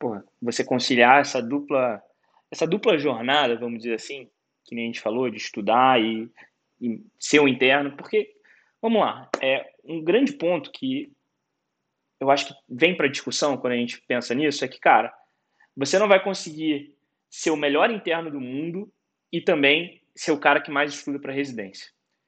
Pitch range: 145-225 Hz